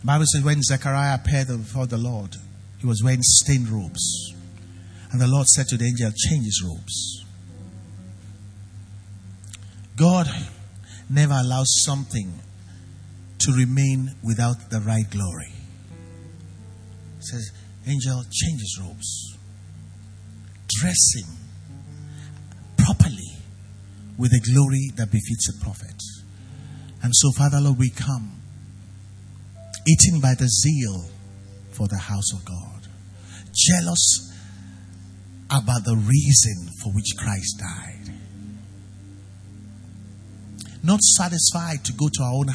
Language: English